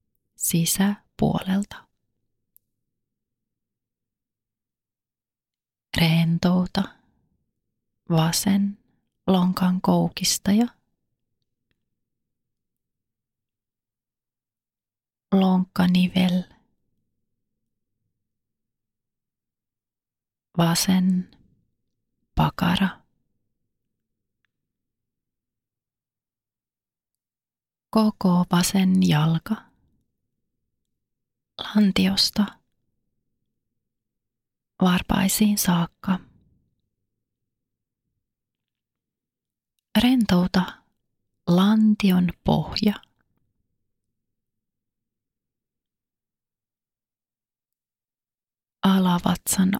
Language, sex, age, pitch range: Finnish, female, 30-49, 110-185 Hz